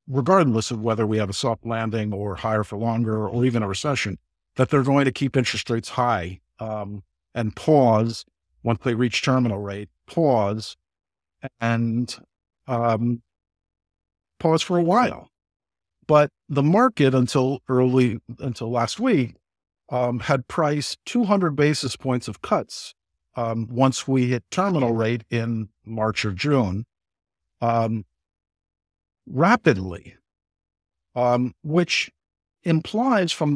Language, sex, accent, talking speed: English, male, American, 125 wpm